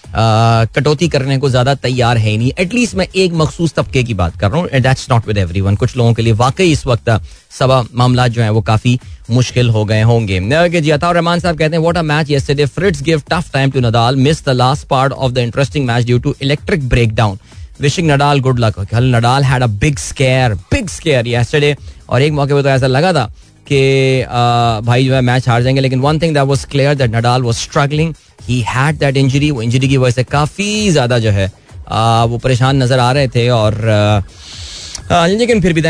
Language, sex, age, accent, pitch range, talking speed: Hindi, male, 20-39, native, 120-150 Hz, 125 wpm